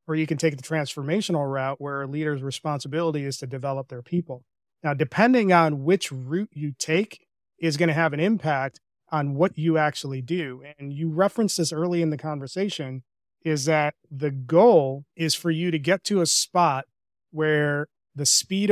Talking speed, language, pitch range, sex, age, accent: 185 wpm, English, 140-170 Hz, male, 30-49, American